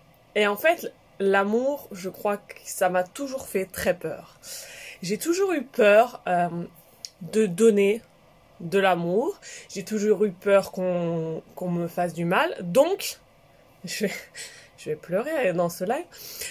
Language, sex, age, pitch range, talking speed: French, female, 20-39, 190-235 Hz, 155 wpm